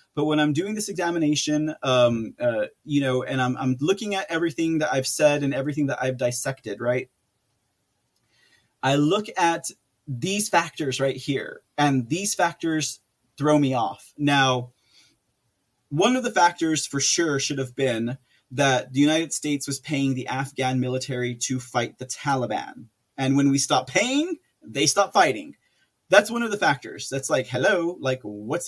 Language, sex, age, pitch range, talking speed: English, male, 20-39, 130-170 Hz, 165 wpm